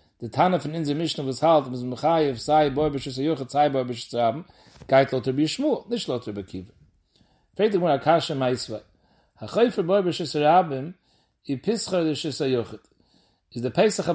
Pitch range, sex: 130-175 Hz, male